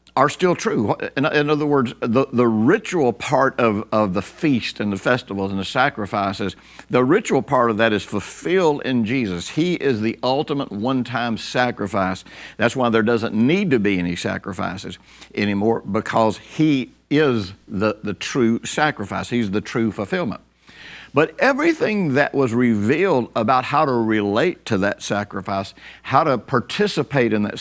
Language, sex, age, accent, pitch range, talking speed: English, male, 60-79, American, 105-135 Hz, 160 wpm